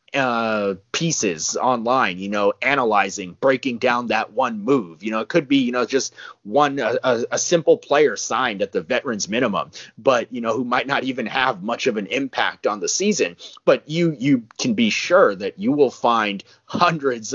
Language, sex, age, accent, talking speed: English, male, 30-49, American, 190 wpm